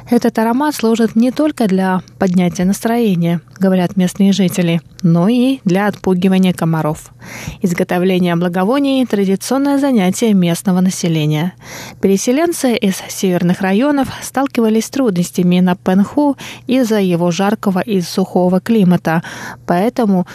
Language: Russian